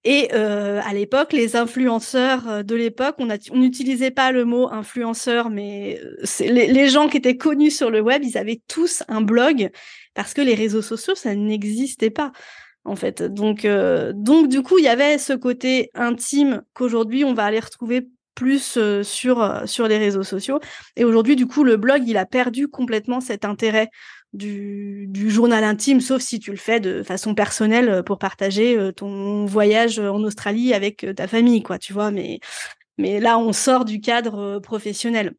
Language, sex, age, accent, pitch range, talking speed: French, female, 20-39, French, 210-260 Hz, 180 wpm